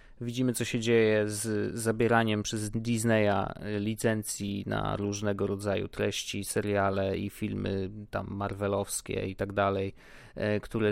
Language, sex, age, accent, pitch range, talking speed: Polish, male, 20-39, native, 105-130 Hz, 120 wpm